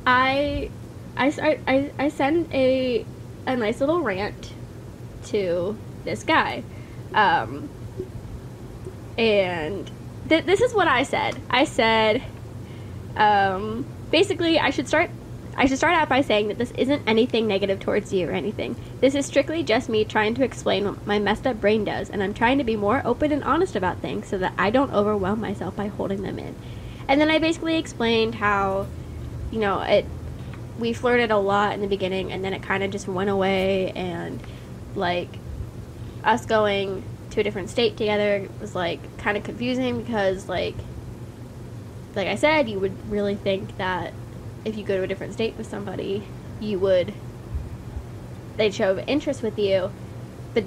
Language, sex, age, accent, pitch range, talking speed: English, female, 10-29, American, 195-255 Hz, 170 wpm